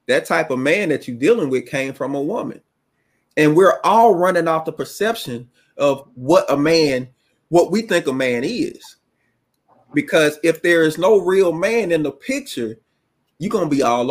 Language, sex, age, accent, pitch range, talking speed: English, male, 30-49, American, 135-180 Hz, 185 wpm